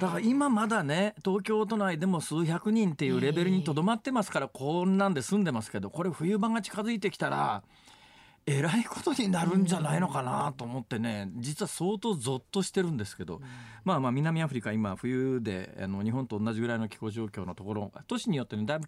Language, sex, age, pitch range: Japanese, male, 40-59, 120-195 Hz